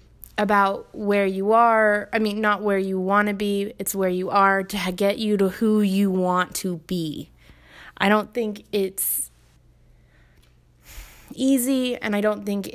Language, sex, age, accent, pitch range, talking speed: English, female, 20-39, American, 185-220 Hz, 160 wpm